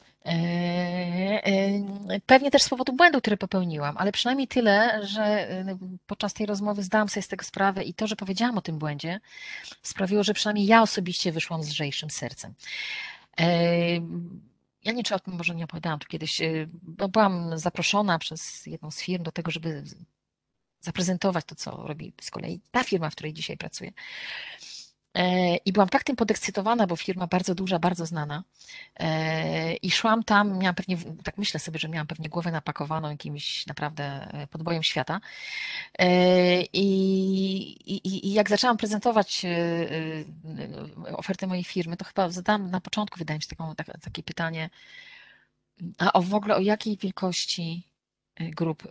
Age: 30-49